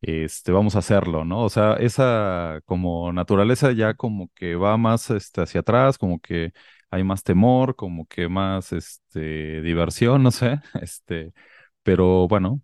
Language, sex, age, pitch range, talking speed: Spanish, male, 30-49, 80-105 Hz, 155 wpm